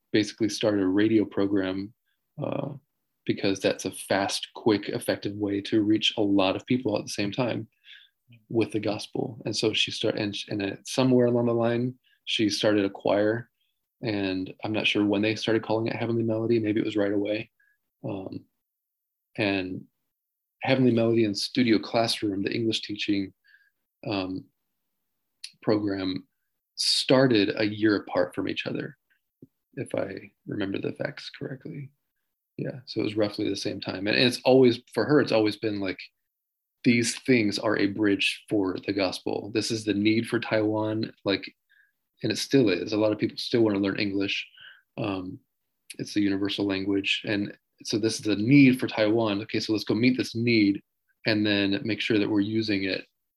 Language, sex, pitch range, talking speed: English, male, 100-120 Hz, 175 wpm